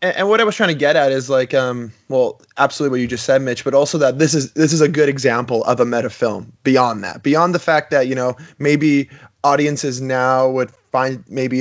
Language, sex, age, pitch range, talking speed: English, male, 20-39, 125-150 Hz, 240 wpm